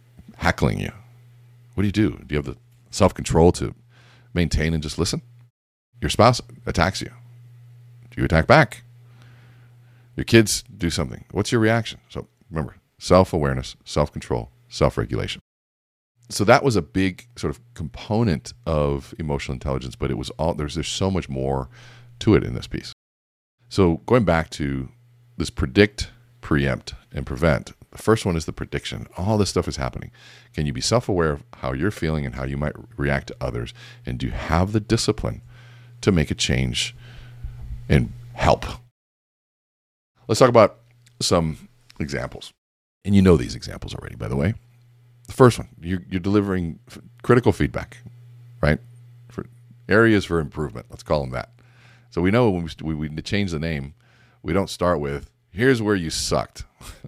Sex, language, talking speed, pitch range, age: male, English, 170 wpm, 80-120 Hz, 40-59